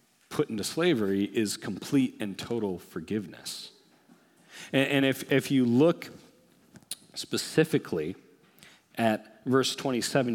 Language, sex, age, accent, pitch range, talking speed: English, male, 40-59, American, 110-135 Hz, 105 wpm